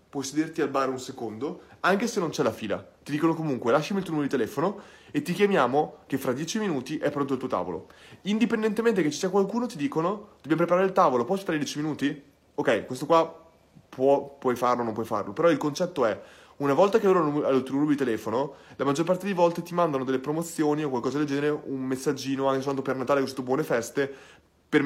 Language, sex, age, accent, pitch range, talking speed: Italian, male, 30-49, native, 135-170 Hz, 230 wpm